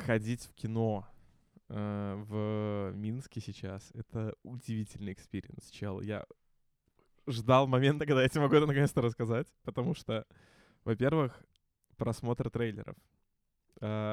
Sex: male